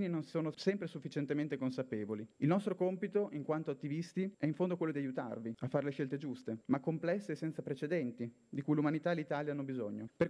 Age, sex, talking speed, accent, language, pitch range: 30-49, male, 205 wpm, native, Italian, 140-175 Hz